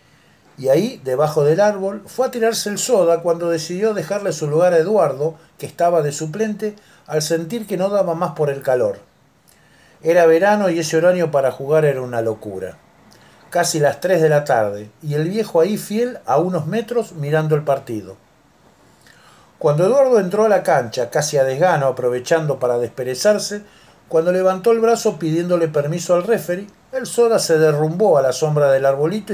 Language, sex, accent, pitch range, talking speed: Spanish, male, Argentinian, 150-205 Hz, 175 wpm